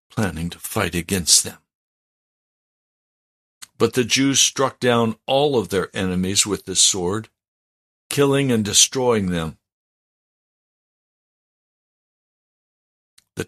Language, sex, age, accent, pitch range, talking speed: English, male, 60-79, American, 90-110 Hz, 100 wpm